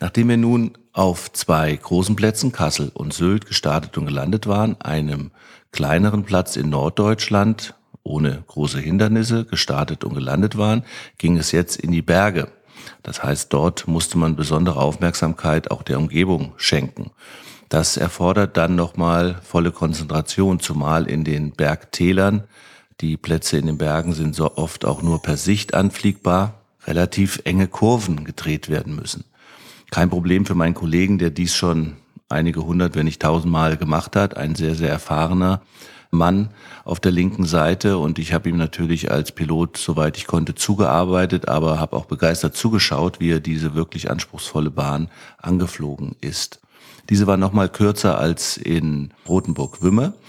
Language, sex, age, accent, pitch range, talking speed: German, male, 50-69, German, 80-95 Hz, 155 wpm